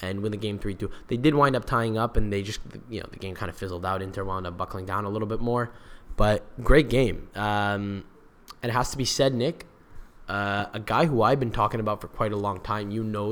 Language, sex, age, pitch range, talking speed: English, male, 10-29, 100-120 Hz, 260 wpm